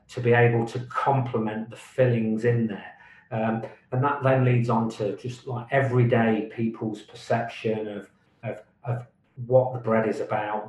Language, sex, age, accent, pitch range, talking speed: English, male, 40-59, British, 110-125 Hz, 165 wpm